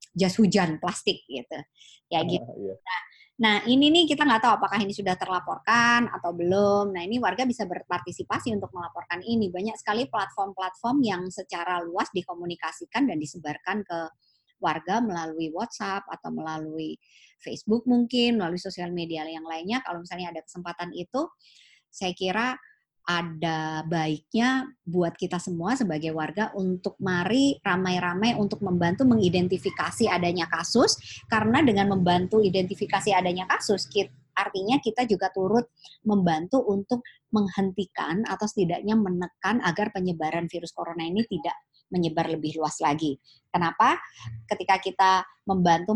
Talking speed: 130 wpm